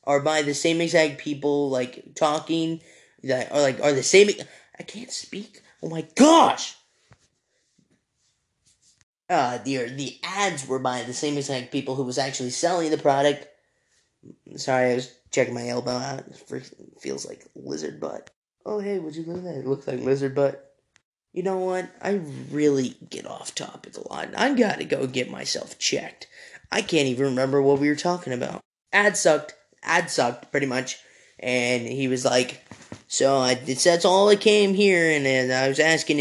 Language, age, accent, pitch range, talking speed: English, 10-29, American, 130-170 Hz, 180 wpm